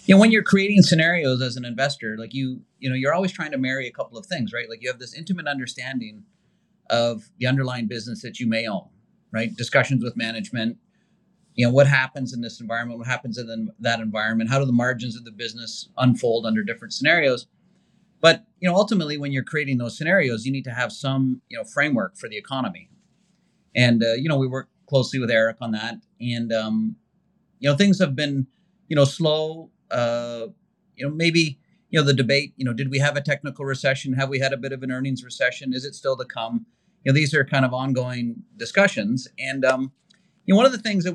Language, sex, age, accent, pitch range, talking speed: English, male, 40-59, American, 125-180 Hz, 220 wpm